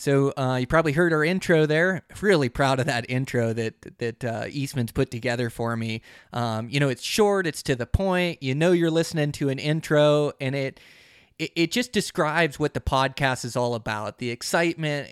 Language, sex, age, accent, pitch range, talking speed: English, male, 20-39, American, 125-155 Hz, 200 wpm